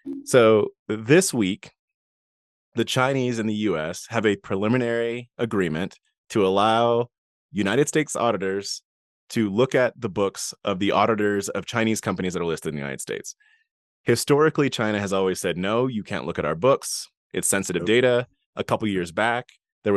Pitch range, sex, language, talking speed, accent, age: 100-135 Hz, male, English, 165 wpm, American, 20-39